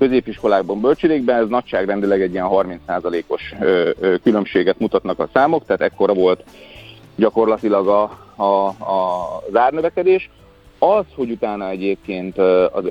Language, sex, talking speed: Hungarian, male, 100 wpm